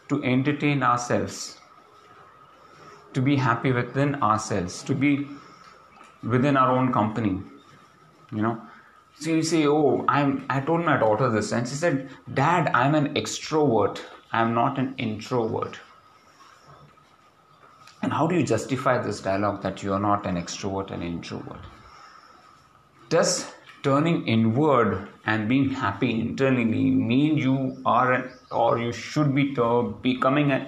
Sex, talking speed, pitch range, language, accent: male, 135 wpm, 115-145 Hz, English, Indian